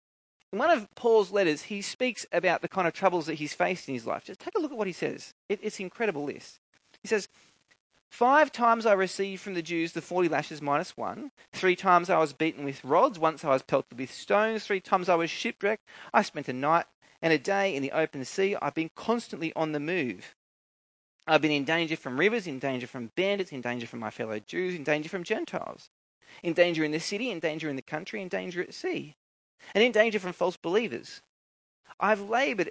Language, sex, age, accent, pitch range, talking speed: English, male, 30-49, Australian, 155-215 Hz, 220 wpm